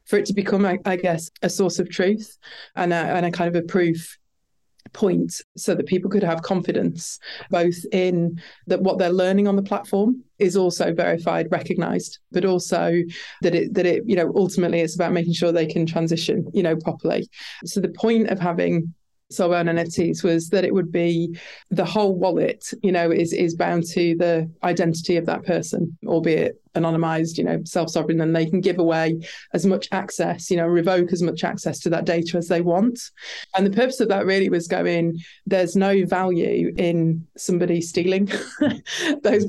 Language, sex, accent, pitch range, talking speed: English, female, British, 170-195 Hz, 190 wpm